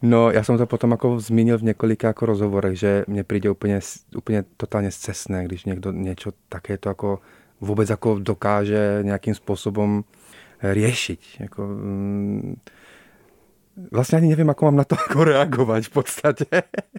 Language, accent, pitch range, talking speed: Czech, native, 100-115 Hz, 130 wpm